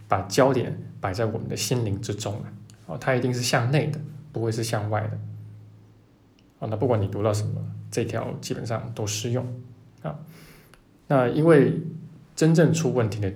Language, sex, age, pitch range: Chinese, male, 20-39, 105-135 Hz